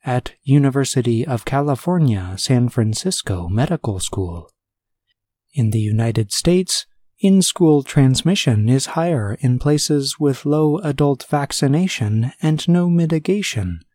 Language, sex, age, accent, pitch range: Chinese, male, 30-49, American, 110-150 Hz